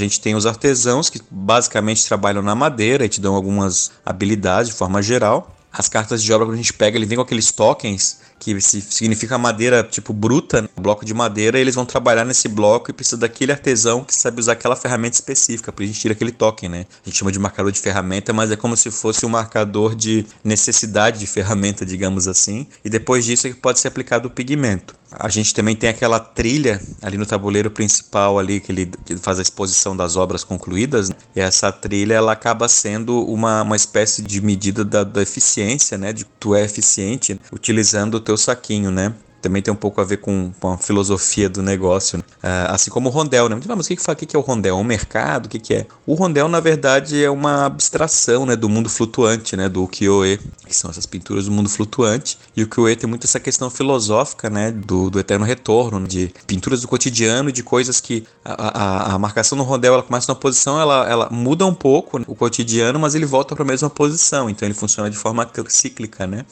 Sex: male